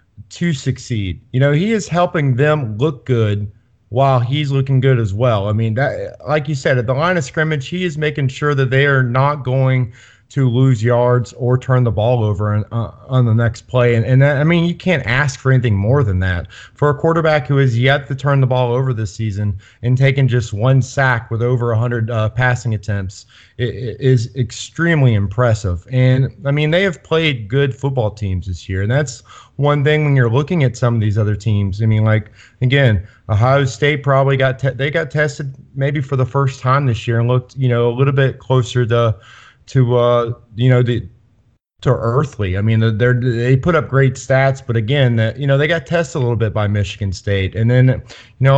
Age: 30-49